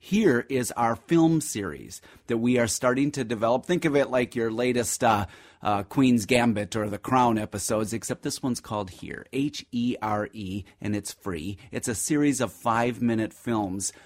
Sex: male